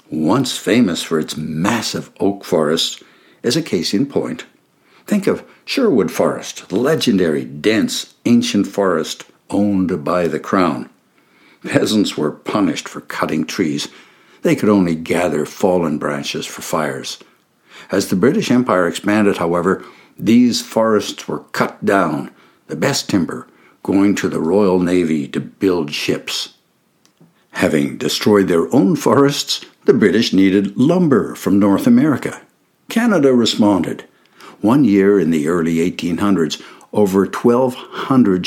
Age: 60-79